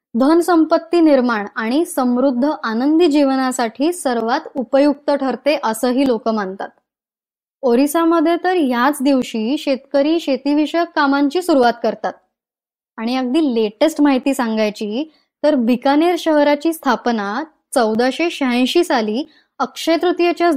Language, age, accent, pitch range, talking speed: Marathi, 10-29, native, 245-315 Hz, 100 wpm